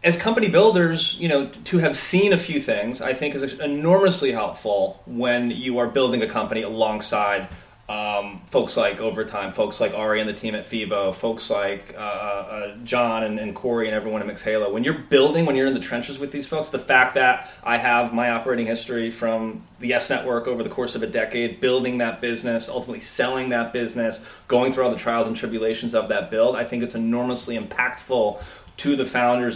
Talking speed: 205 wpm